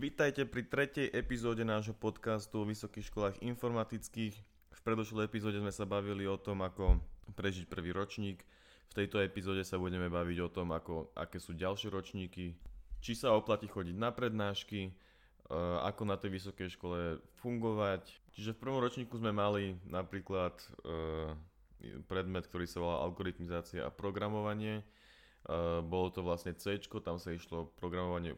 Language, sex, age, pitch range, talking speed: Slovak, male, 20-39, 85-100 Hz, 150 wpm